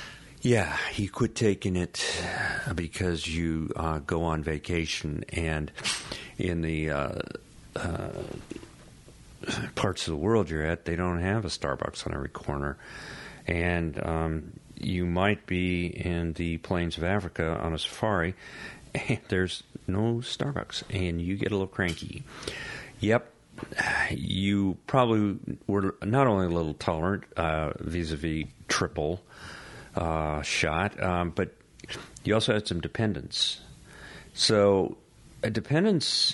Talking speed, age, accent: 125 wpm, 50-69, American